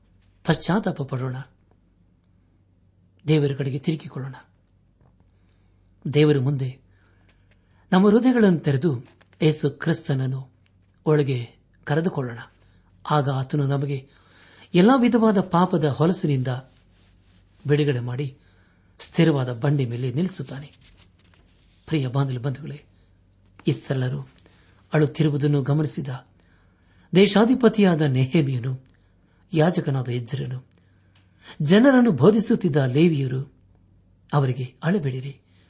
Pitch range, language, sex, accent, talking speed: 95-155 Hz, Kannada, male, native, 70 wpm